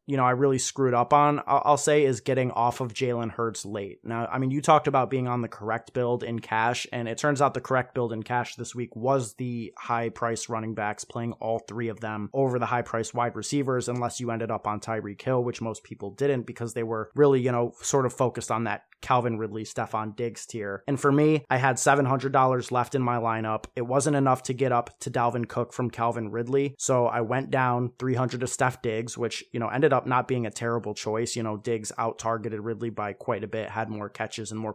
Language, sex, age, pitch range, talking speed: English, male, 20-39, 115-130 Hz, 240 wpm